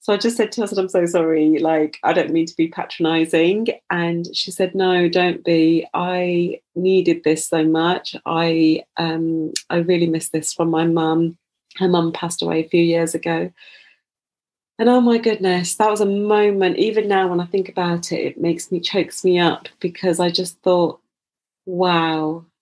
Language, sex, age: English, female, 30-49